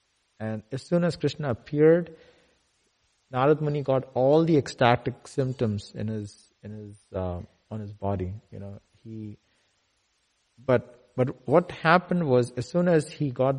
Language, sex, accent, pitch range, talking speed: English, male, Indian, 110-145 Hz, 150 wpm